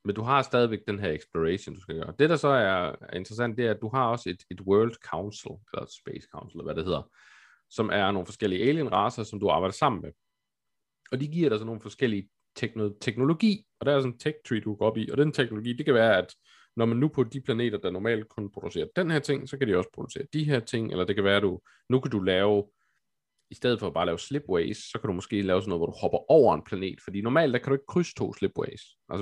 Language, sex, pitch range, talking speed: Danish, male, 105-140 Hz, 265 wpm